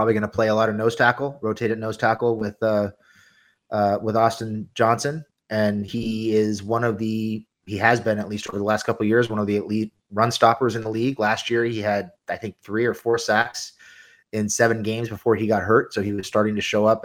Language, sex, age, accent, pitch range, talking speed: English, male, 30-49, American, 100-115 Hz, 240 wpm